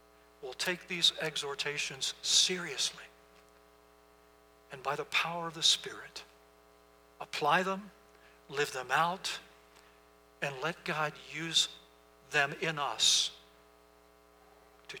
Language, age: English, 60-79